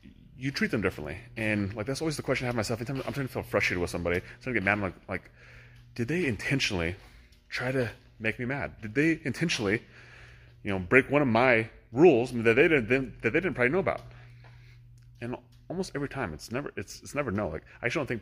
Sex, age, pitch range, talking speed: male, 30-49, 95-120 Hz, 230 wpm